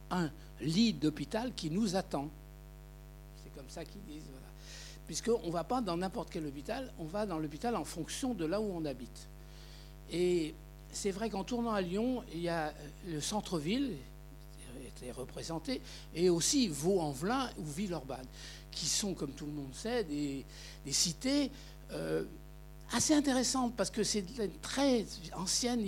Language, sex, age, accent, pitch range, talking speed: French, male, 60-79, French, 155-210 Hz, 165 wpm